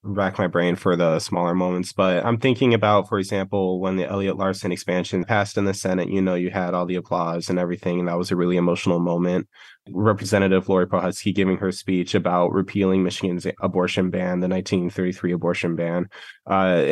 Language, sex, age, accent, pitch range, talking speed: English, male, 20-39, American, 90-100 Hz, 190 wpm